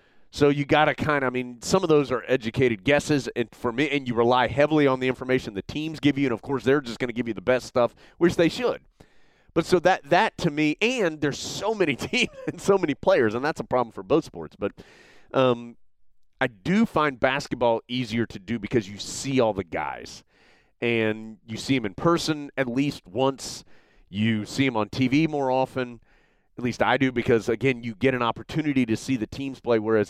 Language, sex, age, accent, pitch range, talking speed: English, male, 30-49, American, 115-145 Hz, 225 wpm